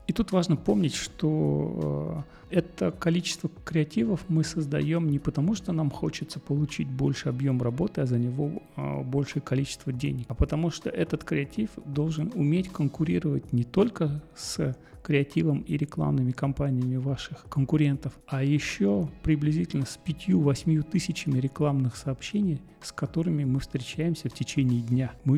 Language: Russian